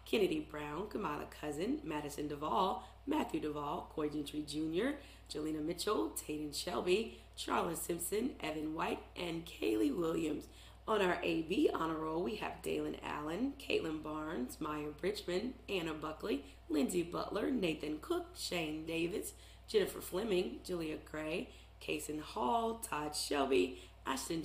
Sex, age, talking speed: female, 30-49, 130 wpm